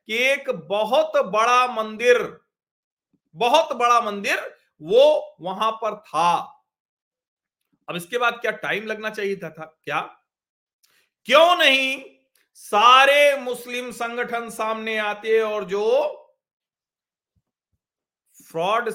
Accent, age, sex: native, 40-59, male